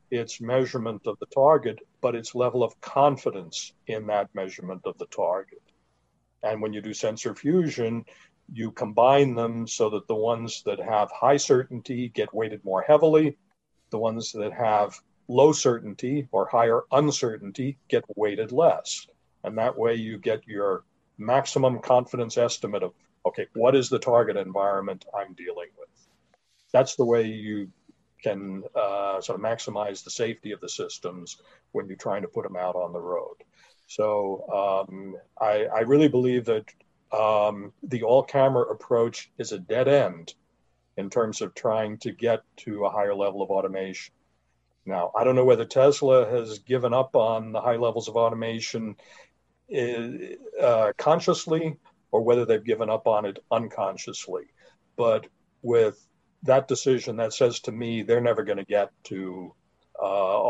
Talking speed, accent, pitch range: 160 wpm, American, 105-135 Hz